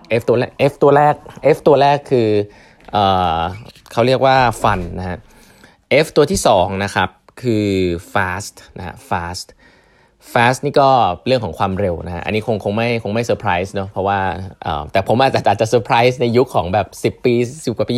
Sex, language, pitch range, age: male, Thai, 90-120 Hz, 20-39